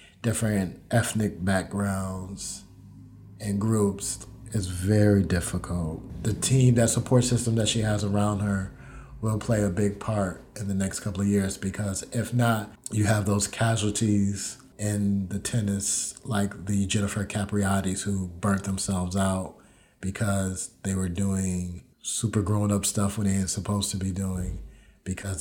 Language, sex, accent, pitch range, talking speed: English, male, American, 95-105 Hz, 150 wpm